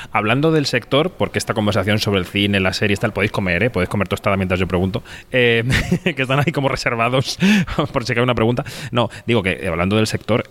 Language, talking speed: Spanish, 225 wpm